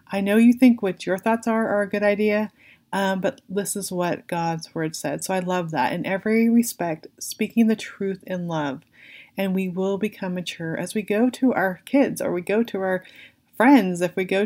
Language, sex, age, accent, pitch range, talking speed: English, female, 20-39, American, 175-205 Hz, 215 wpm